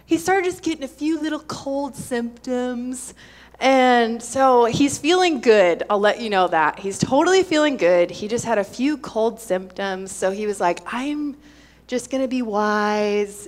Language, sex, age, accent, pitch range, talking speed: English, female, 20-39, American, 205-285 Hz, 175 wpm